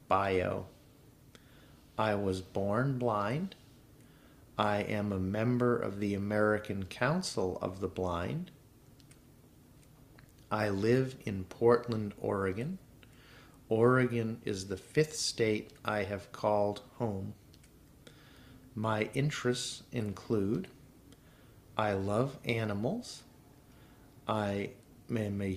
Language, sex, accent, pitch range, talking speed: English, male, American, 100-130 Hz, 90 wpm